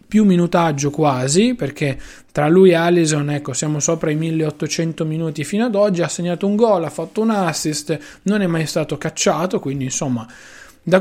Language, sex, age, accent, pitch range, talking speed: Italian, male, 20-39, native, 145-180 Hz, 180 wpm